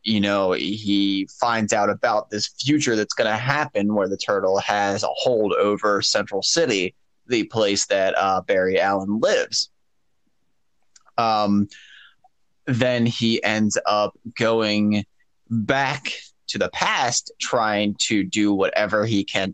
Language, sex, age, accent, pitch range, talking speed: English, male, 20-39, American, 100-115 Hz, 135 wpm